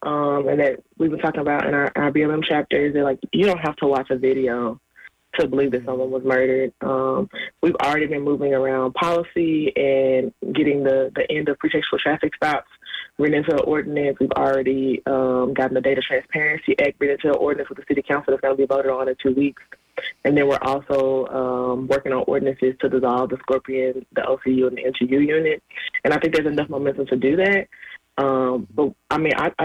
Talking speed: 210 wpm